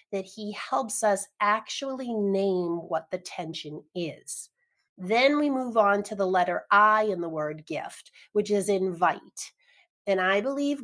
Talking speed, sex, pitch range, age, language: 155 wpm, female, 185-240 Hz, 40-59, English